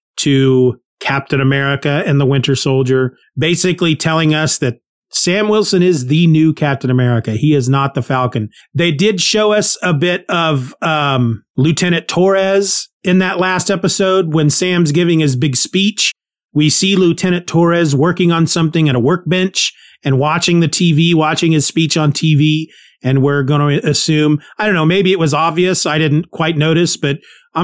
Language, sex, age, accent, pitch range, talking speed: English, male, 30-49, American, 140-180 Hz, 175 wpm